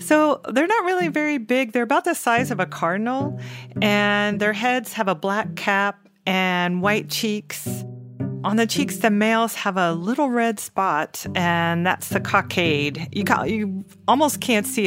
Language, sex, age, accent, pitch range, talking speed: English, female, 40-59, American, 165-210 Hz, 170 wpm